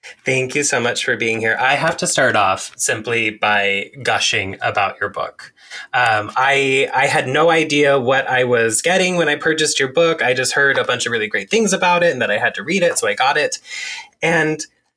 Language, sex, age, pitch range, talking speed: English, male, 20-39, 130-175 Hz, 225 wpm